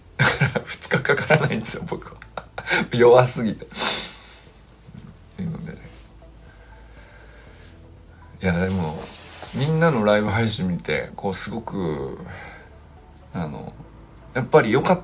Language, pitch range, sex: Japanese, 95-145 Hz, male